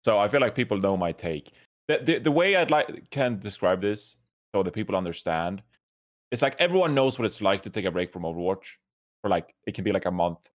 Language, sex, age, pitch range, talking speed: English, male, 30-49, 85-115 Hz, 240 wpm